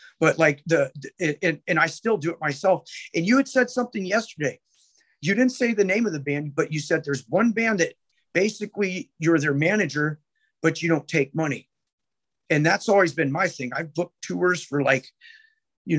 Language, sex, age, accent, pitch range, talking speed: English, male, 40-59, American, 145-185 Hz, 190 wpm